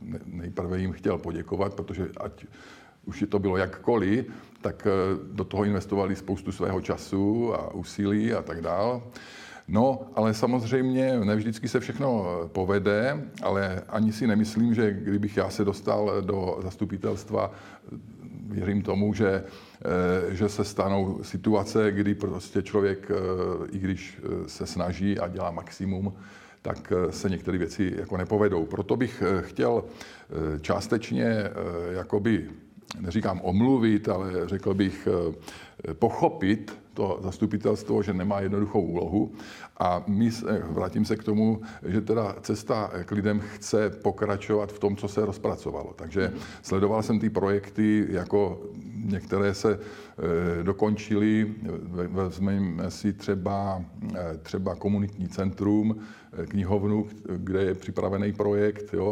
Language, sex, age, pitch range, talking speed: Czech, male, 50-69, 95-105 Hz, 120 wpm